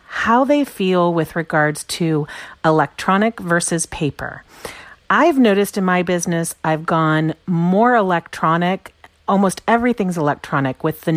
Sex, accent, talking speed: female, American, 125 wpm